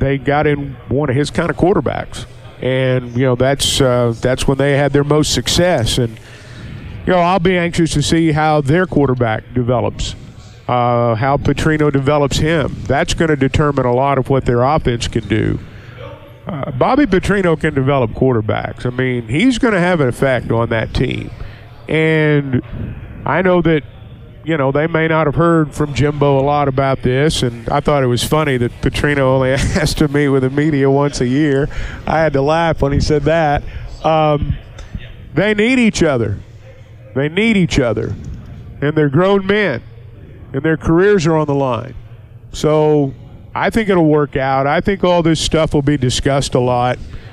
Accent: American